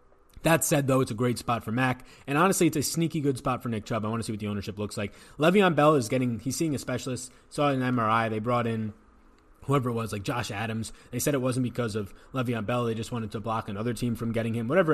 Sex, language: male, English